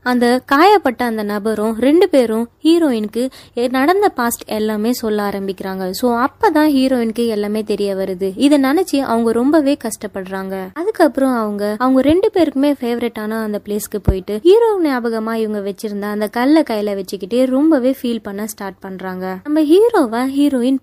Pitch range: 215-295 Hz